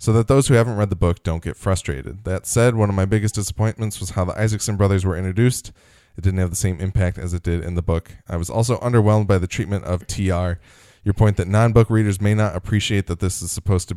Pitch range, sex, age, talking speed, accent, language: 90-110 Hz, male, 10-29, 255 wpm, American, English